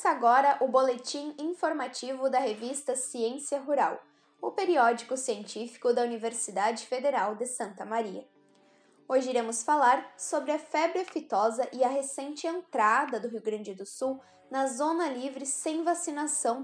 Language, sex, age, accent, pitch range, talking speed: Portuguese, female, 10-29, Brazilian, 230-295 Hz, 135 wpm